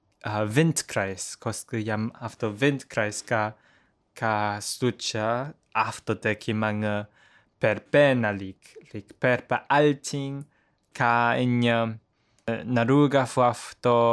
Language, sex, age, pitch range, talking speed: English, male, 20-39, 105-125 Hz, 90 wpm